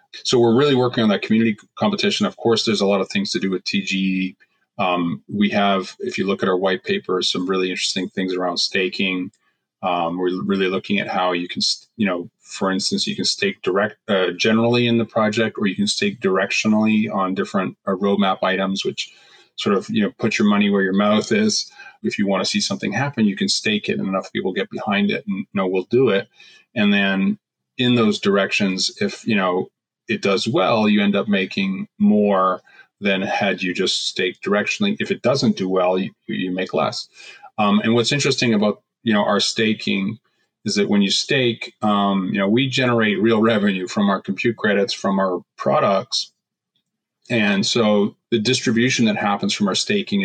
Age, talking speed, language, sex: 30-49, 200 wpm, English, male